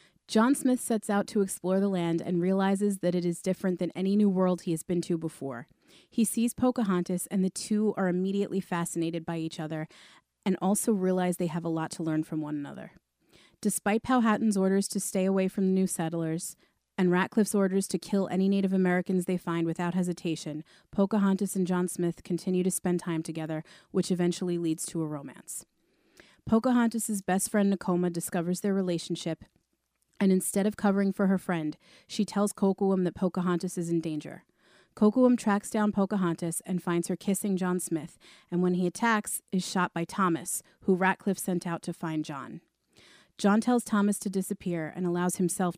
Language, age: English, 30-49